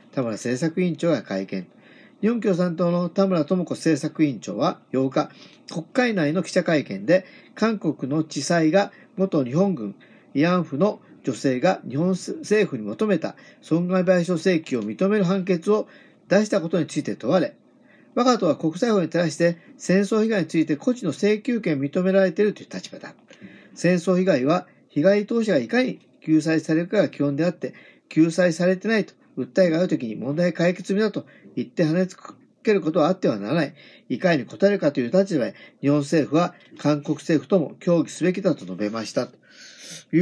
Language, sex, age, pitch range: Japanese, male, 50-69, 140-190 Hz